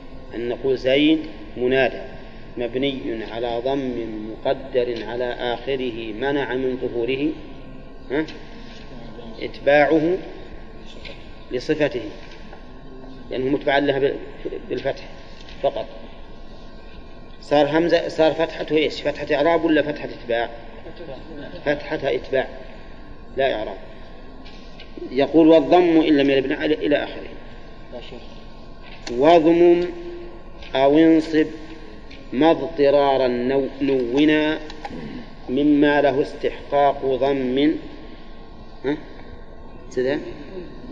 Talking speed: 80 wpm